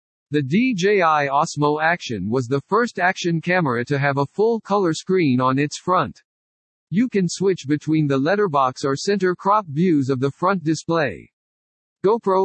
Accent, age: American, 50-69